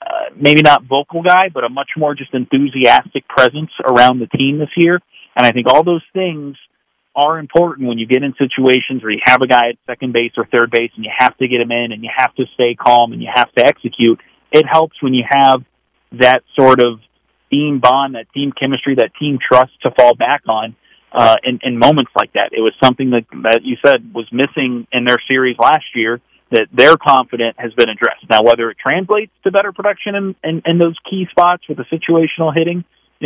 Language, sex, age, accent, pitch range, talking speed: English, male, 40-59, American, 120-150 Hz, 225 wpm